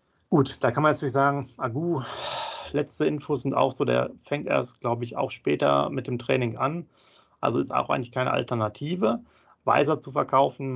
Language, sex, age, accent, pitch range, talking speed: German, male, 40-59, German, 120-145 Hz, 185 wpm